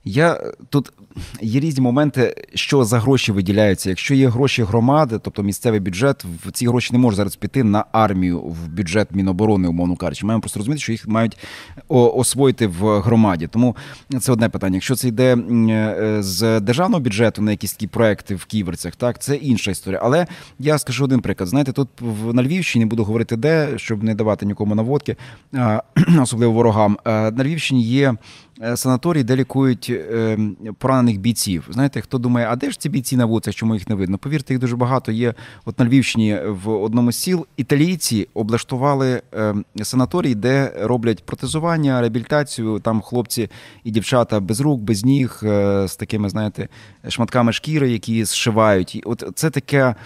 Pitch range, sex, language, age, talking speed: 105-130 Hz, male, Ukrainian, 30-49, 165 wpm